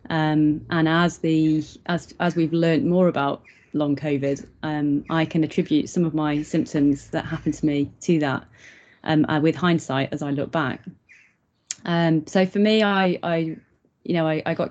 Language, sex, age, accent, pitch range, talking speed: English, female, 30-49, British, 155-175 Hz, 185 wpm